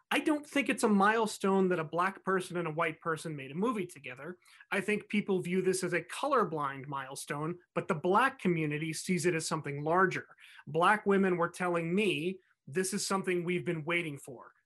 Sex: male